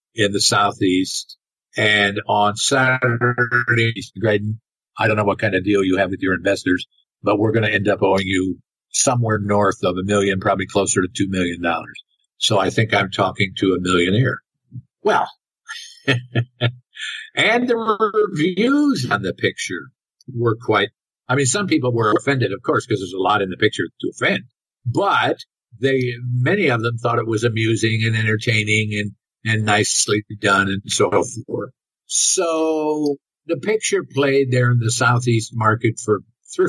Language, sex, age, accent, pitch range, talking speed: English, male, 50-69, American, 100-125 Hz, 165 wpm